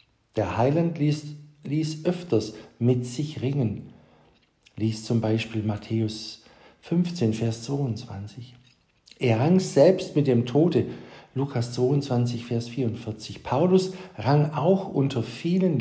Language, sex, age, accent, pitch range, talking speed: German, male, 50-69, German, 115-155 Hz, 115 wpm